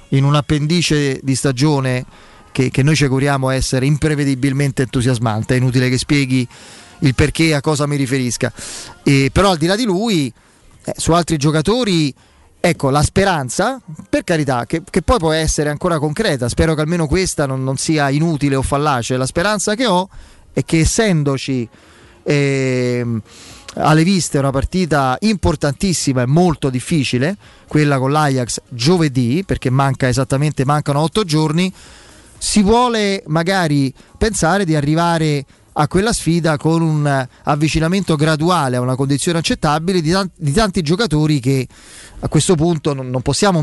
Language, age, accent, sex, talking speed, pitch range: Italian, 30-49, native, male, 150 wpm, 135-165 Hz